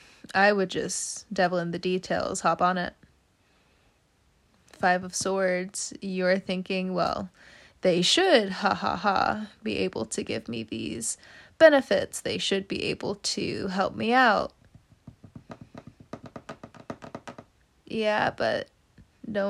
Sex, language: female, English